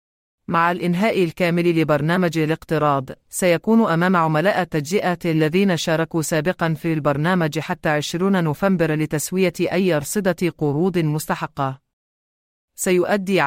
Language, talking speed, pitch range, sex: English, 105 wpm, 155-180 Hz, female